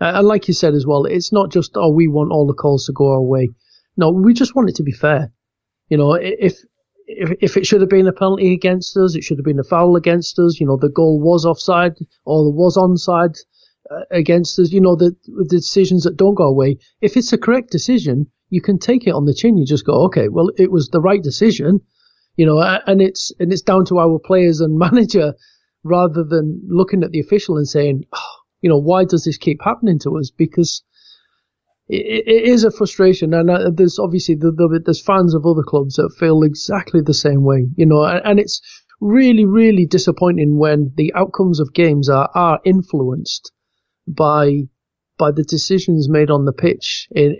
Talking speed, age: 210 wpm, 30-49